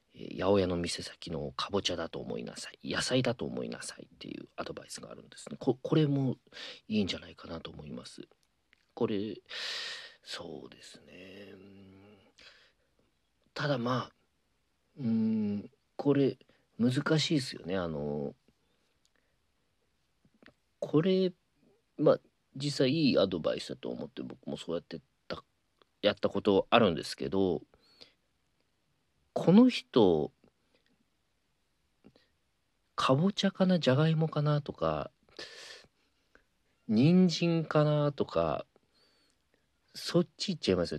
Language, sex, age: Japanese, male, 40-59